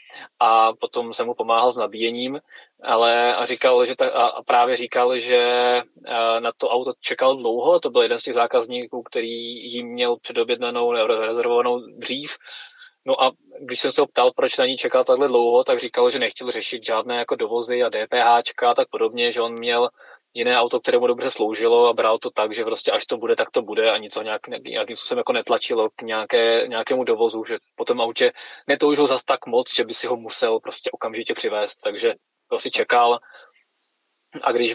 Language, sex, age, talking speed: Czech, male, 20-39, 190 wpm